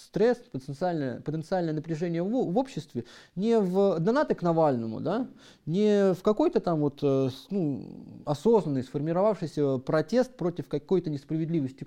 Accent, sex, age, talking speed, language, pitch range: native, male, 30-49, 120 wpm, Russian, 155-215 Hz